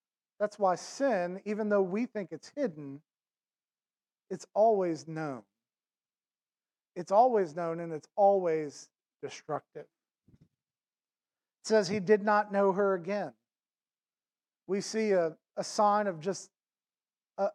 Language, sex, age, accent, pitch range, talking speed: English, male, 40-59, American, 185-225 Hz, 120 wpm